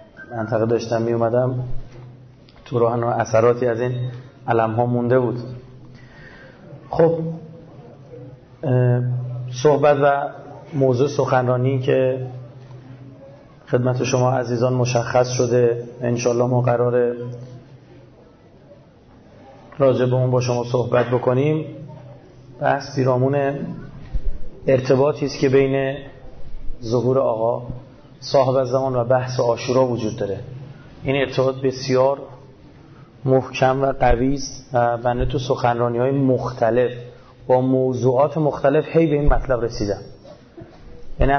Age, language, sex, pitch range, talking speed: 30-49, Persian, male, 125-145 Hz, 100 wpm